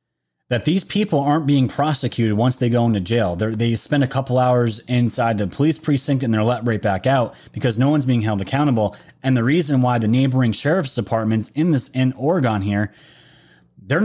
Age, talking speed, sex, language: 30-49, 200 wpm, male, English